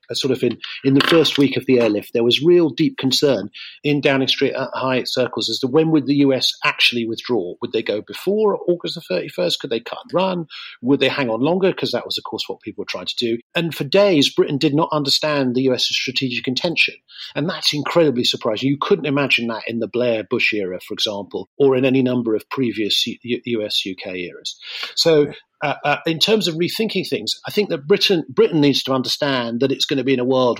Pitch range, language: 125-155 Hz, English